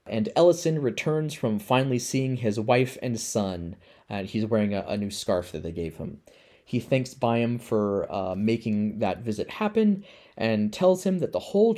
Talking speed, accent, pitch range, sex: 185 wpm, American, 110-155 Hz, male